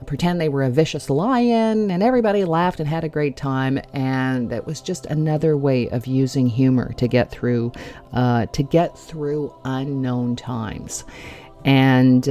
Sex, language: female, English